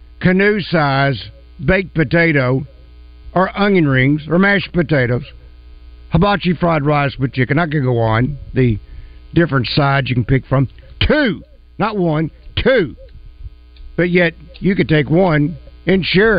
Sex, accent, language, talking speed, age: male, American, English, 140 wpm, 60-79